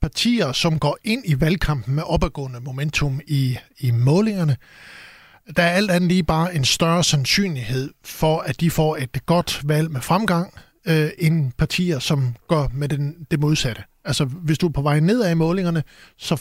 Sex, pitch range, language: male, 145-175 Hz, Danish